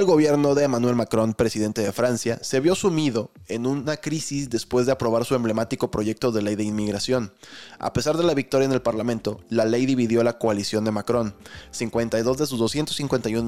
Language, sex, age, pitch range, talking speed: Spanish, male, 20-39, 110-135 Hz, 190 wpm